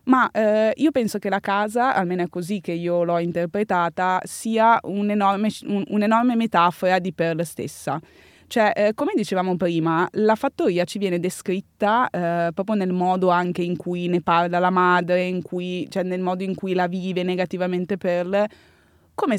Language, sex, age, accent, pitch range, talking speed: Italian, female, 20-39, native, 175-215 Hz, 175 wpm